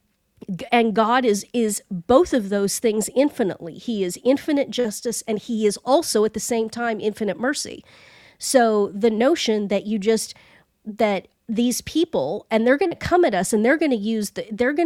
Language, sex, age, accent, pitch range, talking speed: English, female, 40-59, American, 200-250 Hz, 175 wpm